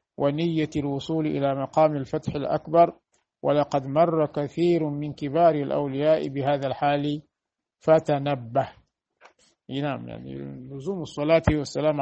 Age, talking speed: 50-69, 95 wpm